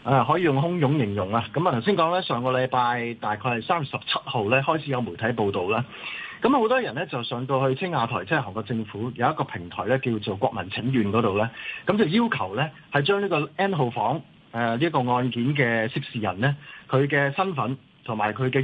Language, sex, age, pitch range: Chinese, male, 20-39, 115-155 Hz